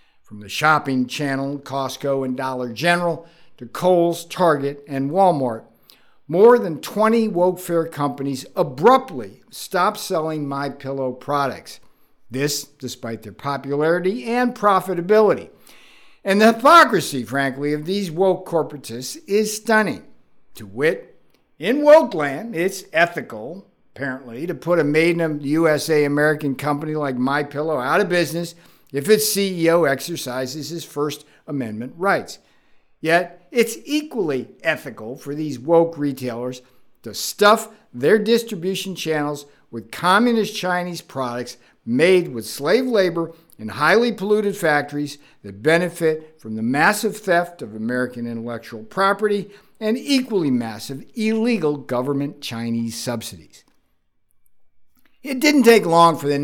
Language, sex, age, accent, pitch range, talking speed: English, male, 60-79, American, 135-195 Hz, 125 wpm